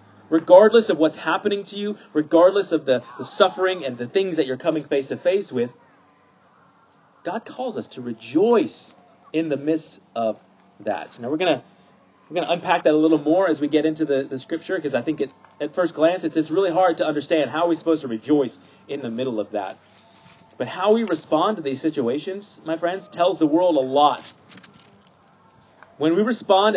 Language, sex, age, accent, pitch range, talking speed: English, male, 30-49, American, 150-210 Hz, 200 wpm